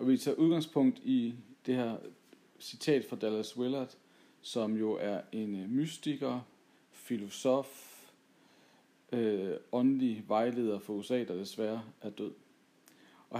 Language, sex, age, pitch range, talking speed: Danish, male, 50-69, 110-135 Hz, 115 wpm